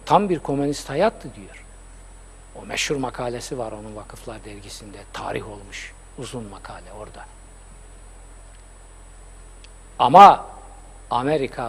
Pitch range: 95-150 Hz